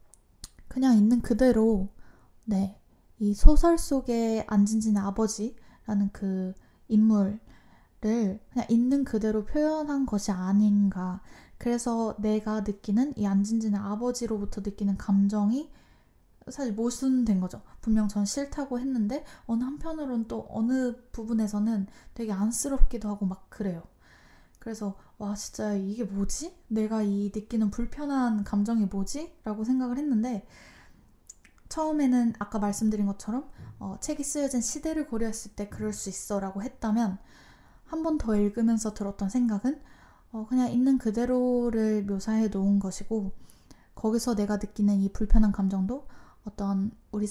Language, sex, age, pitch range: Korean, female, 10-29, 200-245 Hz